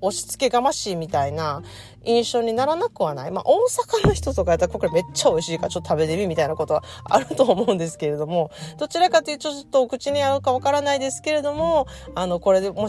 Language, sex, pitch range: Japanese, female, 170-265 Hz